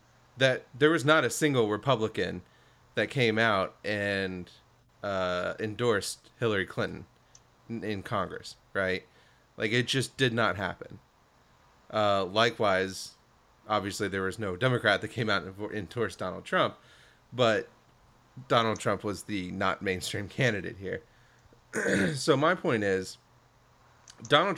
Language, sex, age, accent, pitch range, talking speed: English, male, 30-49, American, 105-130 Hz, 125 wpm